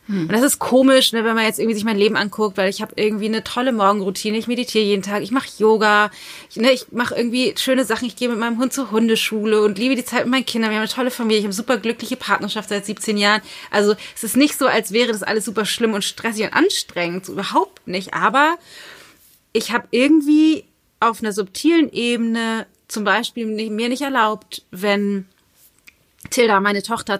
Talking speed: 205 wpm